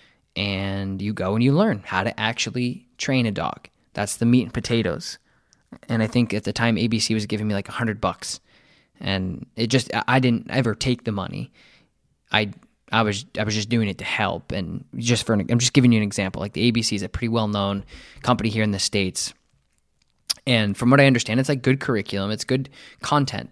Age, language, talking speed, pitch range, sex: 20-39, English, 210 wpm, 105-130 Hz, male